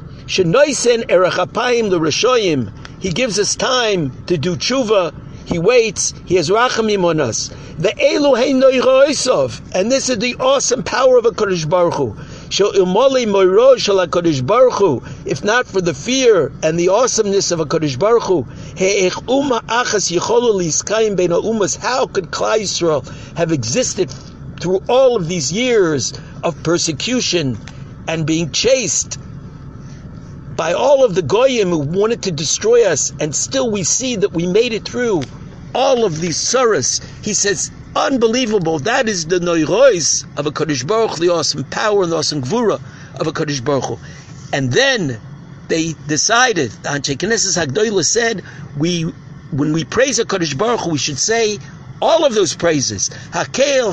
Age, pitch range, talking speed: 60-79, 150-230 Hz, 130 wpm